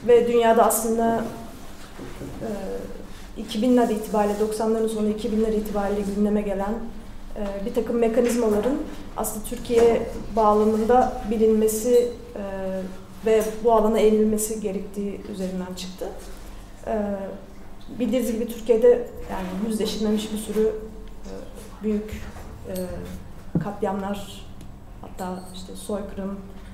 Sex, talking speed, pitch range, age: female, 95 wpm, 200-235 Hz, 30-49